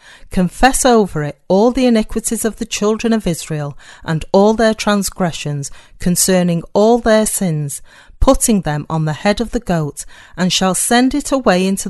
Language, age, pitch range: English, 40-59, 165-230 Hz